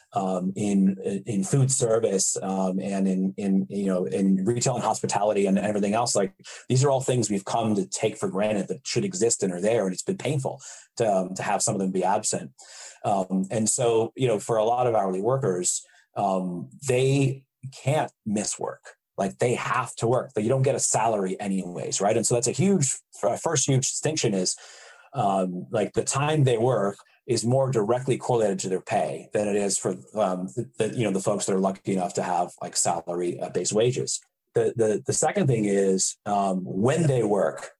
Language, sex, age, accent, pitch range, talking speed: English, male, 30-49, American, 95-125 Hz, 205 wpm